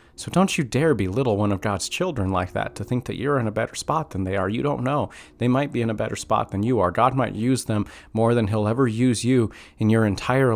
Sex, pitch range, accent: male, 85-115 Hz, American